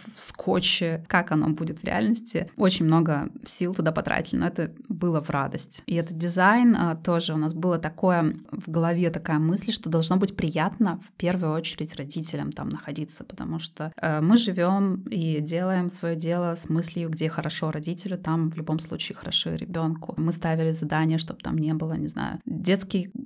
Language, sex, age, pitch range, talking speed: Russian, female, 20-39, 155-180 Hz, 175 wpm